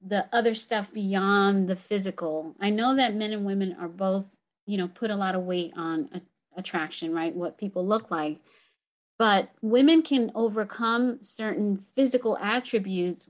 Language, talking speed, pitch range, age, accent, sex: English, 160 wpm, 180-220 Hz, 40-59, American, female